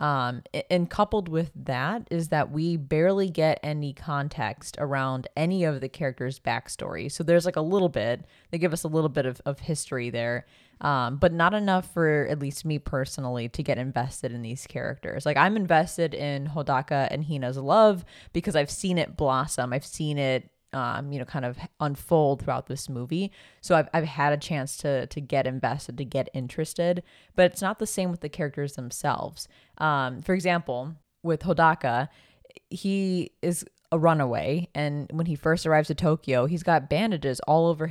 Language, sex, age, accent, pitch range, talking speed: English, female, 20-39, American, 135-170 Hz, 185 wpm